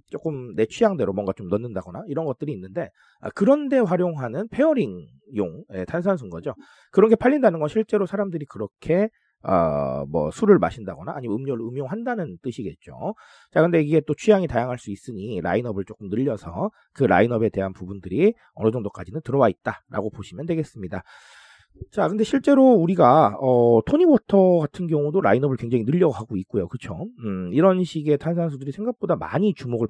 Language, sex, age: Korean, male, 40-59